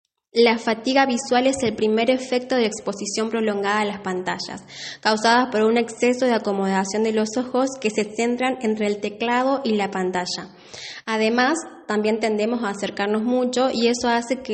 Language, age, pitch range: Spanish, 20-39, 205-240 Hz